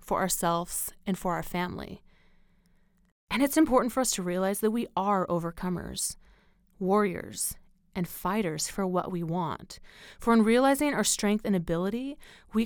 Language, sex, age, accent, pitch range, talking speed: English, female, 30-49, American, 180-220 Hz, 150 wpm